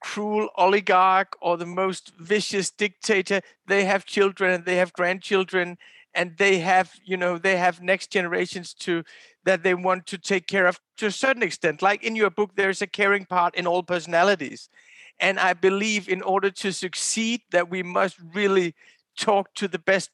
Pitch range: 180-210 Hz